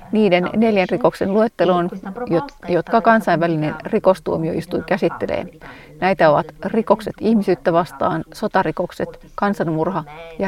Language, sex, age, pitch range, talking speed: Finnish, female, 40-59, 180-220 Hz, 90 wpm